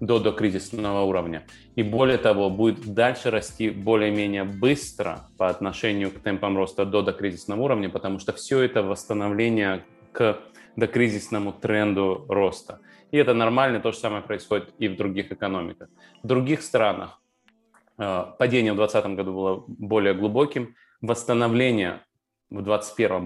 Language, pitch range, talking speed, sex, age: Russian, 100-115 Hz, 130 wpm, male, 20-39